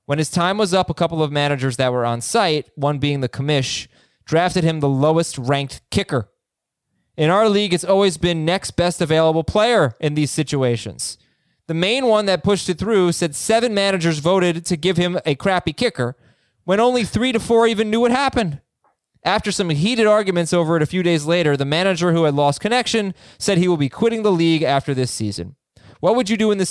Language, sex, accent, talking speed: English, male, American, 210 wpm